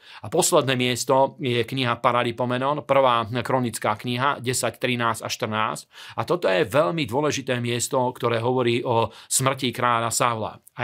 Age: 40-59